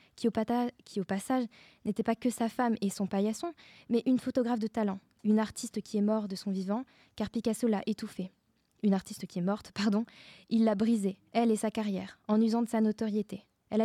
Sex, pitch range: female, 200-230 Hz